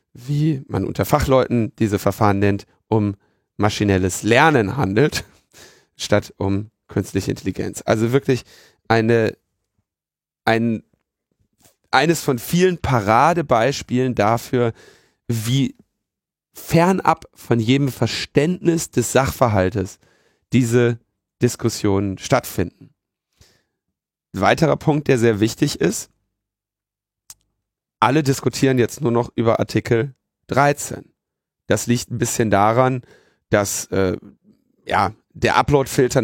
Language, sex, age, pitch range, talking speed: German, male, 40-59, 105-135 Hz, 100 wpm